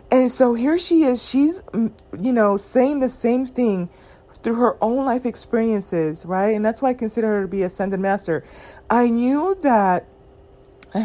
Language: English